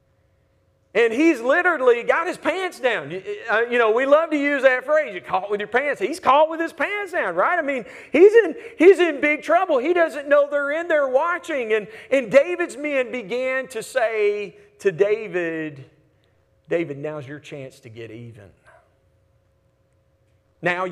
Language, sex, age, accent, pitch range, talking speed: English, male, 40-59, American, 125-210 Hz, 170 wpm